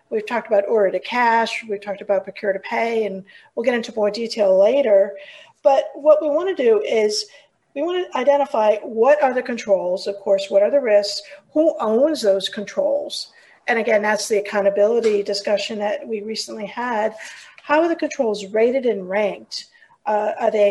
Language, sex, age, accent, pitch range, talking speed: English, female, 50-69, American, 205-280 Hz, 180 wpm